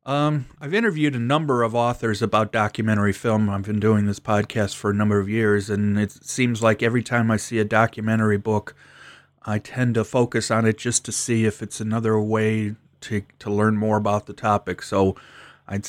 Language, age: English, 30-49